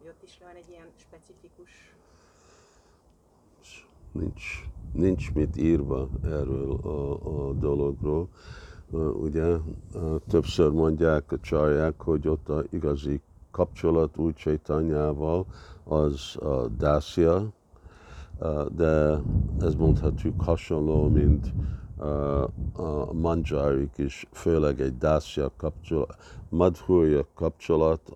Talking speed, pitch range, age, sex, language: 100 wpm, 75-85 Hz, 50-69, male, Hungarian